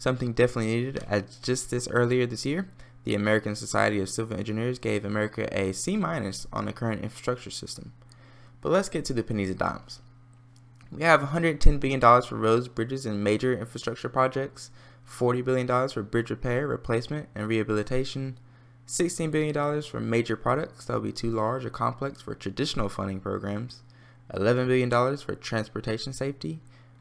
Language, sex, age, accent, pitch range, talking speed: English, male, 20-39, American, 115-135 Hz, 160 wpm